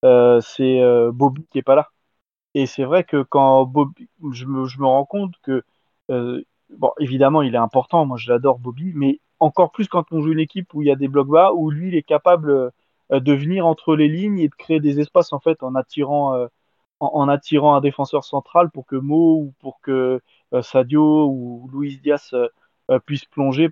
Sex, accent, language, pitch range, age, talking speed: male, French, French, 130-160 Hz, 20-39, 220 wpm